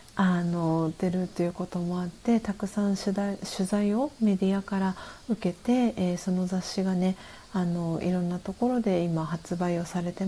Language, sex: Japanese, female